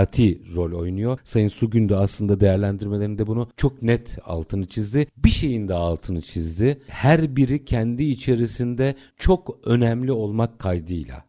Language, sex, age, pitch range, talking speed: Turkish, male, 50-69, 95-130 Hz, 130 wpm